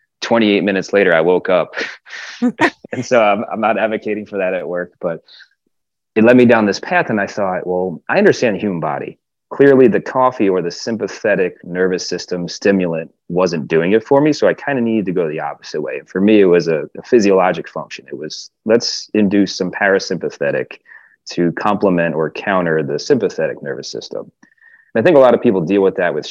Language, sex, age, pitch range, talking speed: English, male, 30-49, 90-105 Hz, 205 wpm